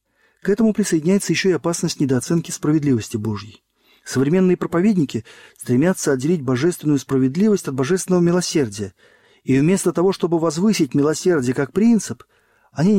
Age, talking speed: 40-59, 125 wpm